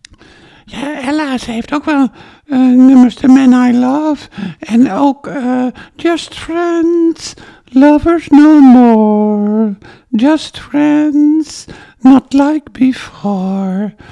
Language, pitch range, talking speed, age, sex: Dutch, 215-290 Hz, 100 wpm, 60-79, male